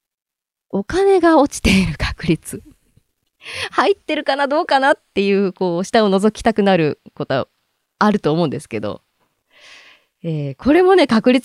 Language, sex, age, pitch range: Japanese, female, 20-39, 165-275 Hz